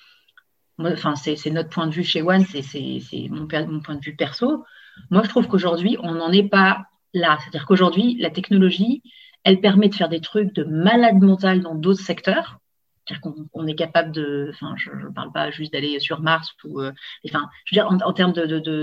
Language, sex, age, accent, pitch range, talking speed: French, female, 40-59, French, 165-195 Hz, 220 wpm